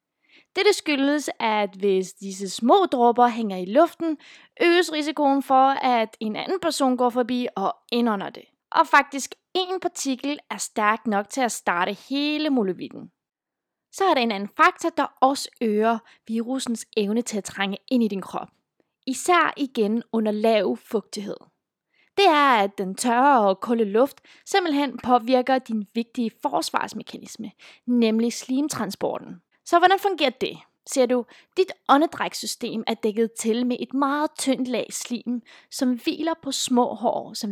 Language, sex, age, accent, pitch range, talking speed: Danish, female, 20-39, native, 220-295 Hz, 150 wpm